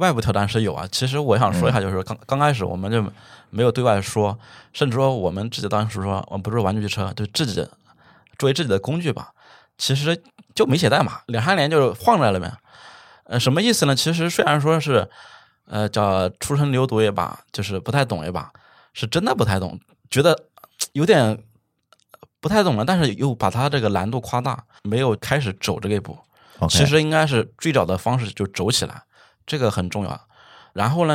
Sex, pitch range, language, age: male, 100-140 Hz, Chinese, 20-39